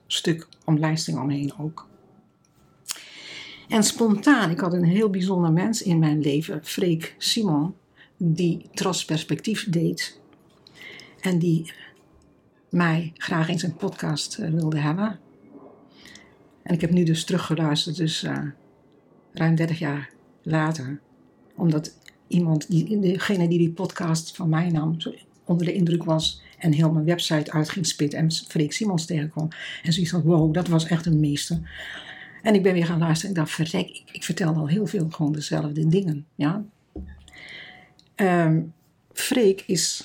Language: Dutch